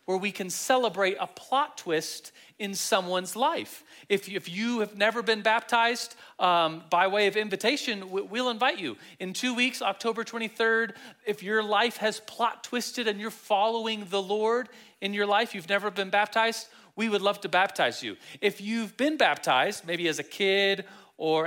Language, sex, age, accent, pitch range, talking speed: English, male, 30-49, American, 175-225 Hz, 175 wpm